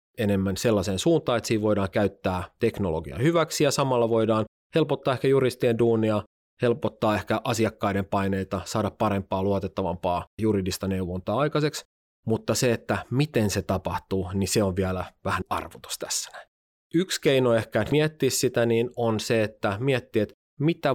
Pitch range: 100-120 Hz